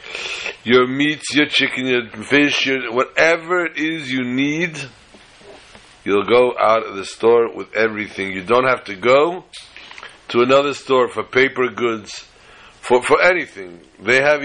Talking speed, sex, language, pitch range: 150 wpm, male, English, 120-155 Hz